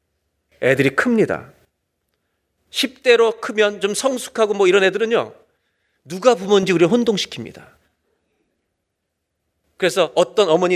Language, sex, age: Korean, male, 40-59